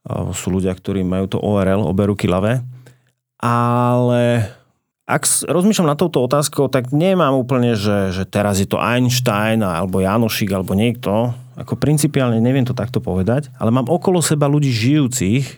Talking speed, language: 150 wpm, Slovak